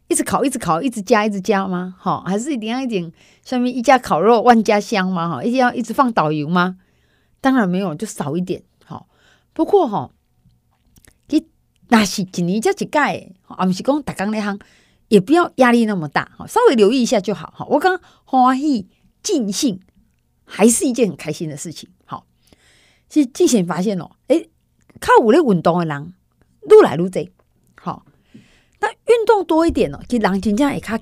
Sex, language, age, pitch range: female, Chinese, 30-49, 180-250 Hz